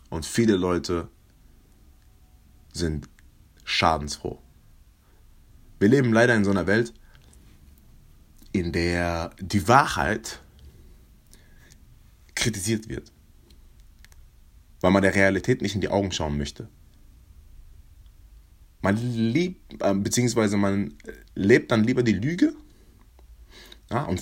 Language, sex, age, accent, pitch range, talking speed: German, male, 30-49, German, 75-110 Hz, 90 wpm